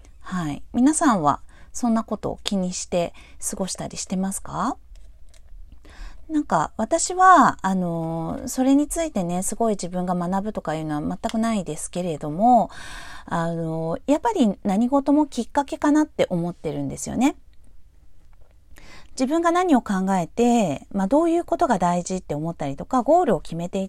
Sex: female